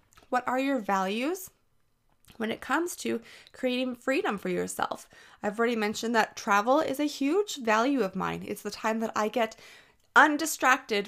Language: English